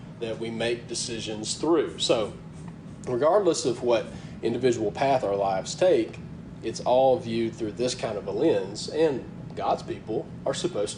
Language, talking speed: English, 155 wpm